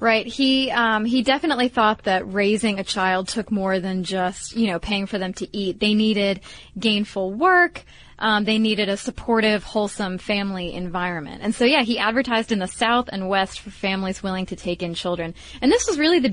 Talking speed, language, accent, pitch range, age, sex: 200 wpm, English, American, 190-245 Hz, 30-49, female